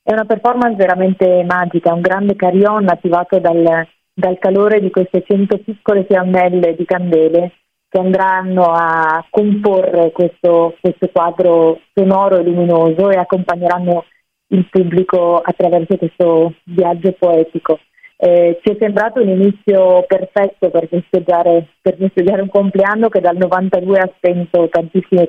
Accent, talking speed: native, 135 wpm